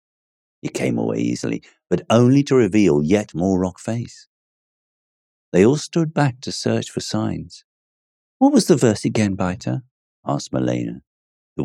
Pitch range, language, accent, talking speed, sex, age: 70-105 Hz, English, British, 150 wpm, male, 50-69